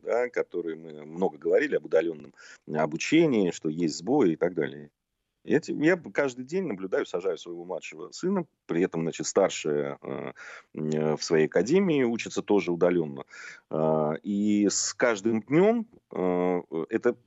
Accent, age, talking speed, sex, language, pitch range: native, 40-59, 125 wpm, male, Russian, 75-120 Hz